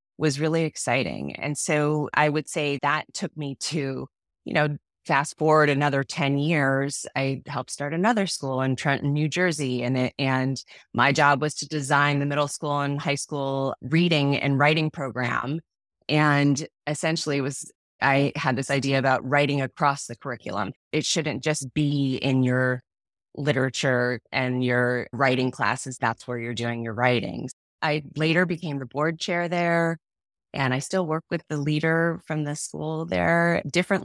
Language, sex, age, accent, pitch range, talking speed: English, female, 20-39, American, 135-165 Hz, 165 wpm